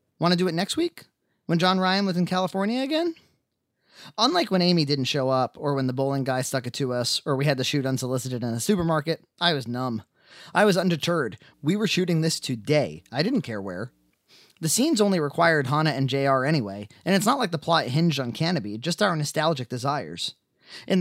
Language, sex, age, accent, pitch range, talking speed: English, male, 20-39, American, 130-175 Hz, 210 wpm